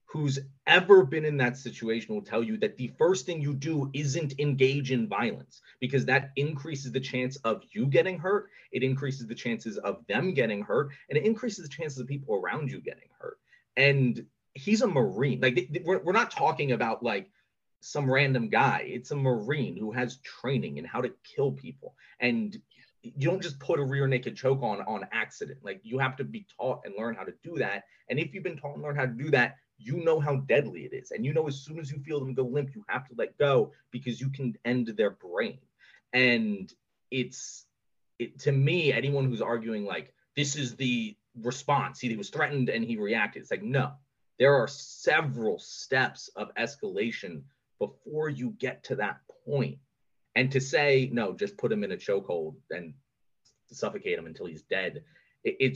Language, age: English, 30-49